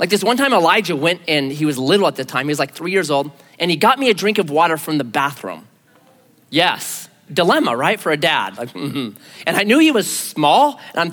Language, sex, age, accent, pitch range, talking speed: English, male, 30-49, American, 145-230 Hz, 250 wpm